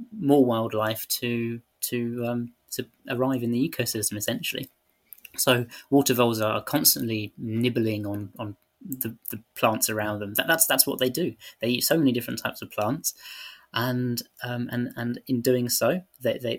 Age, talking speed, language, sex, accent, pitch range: 20-39, 170 wpm, English, male, British, 110-125 Hz